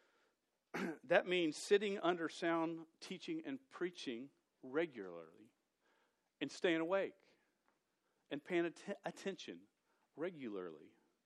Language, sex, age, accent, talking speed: English, male, 50-69, American, 90 wpm